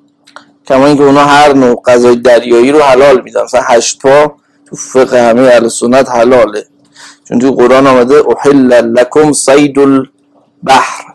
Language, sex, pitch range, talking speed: Persian, male, 120-145 Hz, 135 wpm